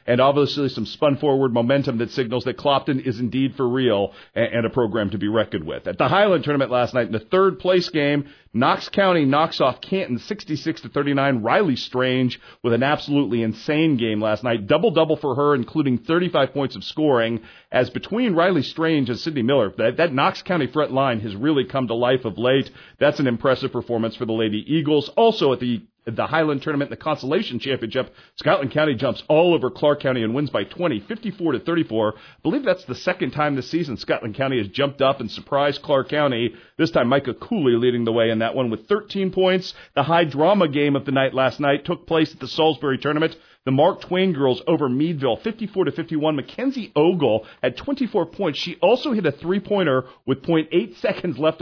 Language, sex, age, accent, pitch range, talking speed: English, male, 40-59, American, 125-160 Hz, 200 wpm